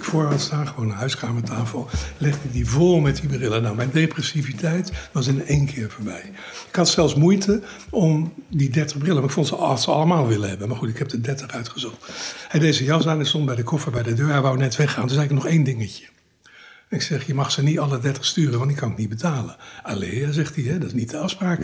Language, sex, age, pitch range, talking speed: Dutch, male, 60-79, 120-165 Hz, 245 wpm